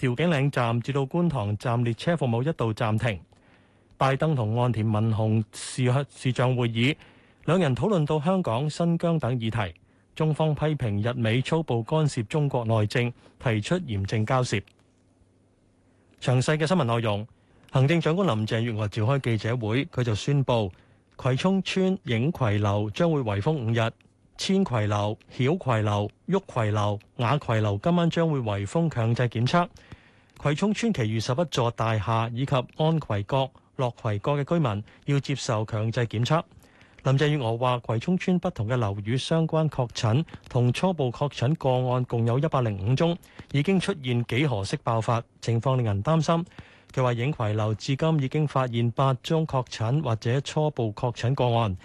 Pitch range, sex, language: 110-150 Hz, male, Chinese